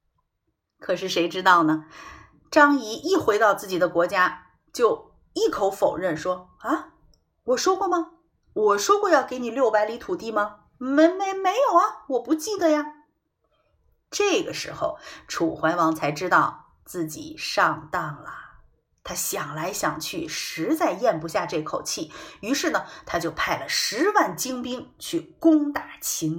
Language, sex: Chinese, female